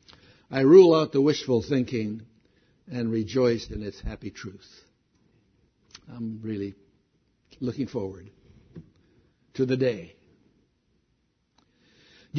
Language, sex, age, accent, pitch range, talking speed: English, male, 70-89, American, 120-170 Hz, 95 wpm